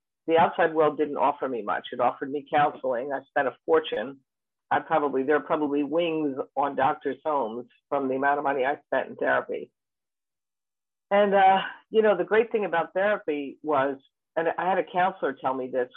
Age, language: 50-69, English